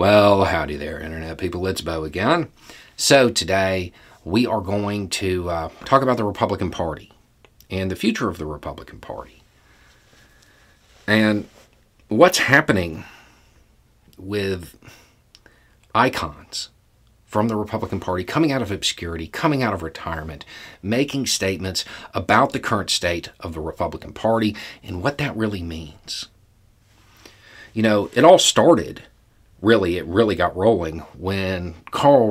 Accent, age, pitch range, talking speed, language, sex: American, 40-59, 90-115 Hz, 130 wpm, English, male